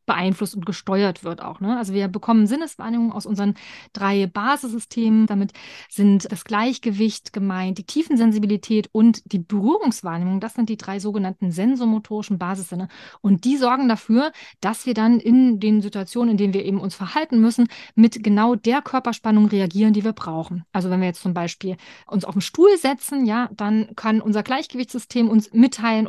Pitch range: 195-235 Hz